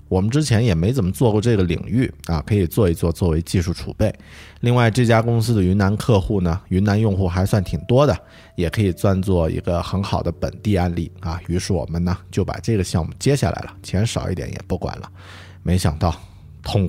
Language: Chinese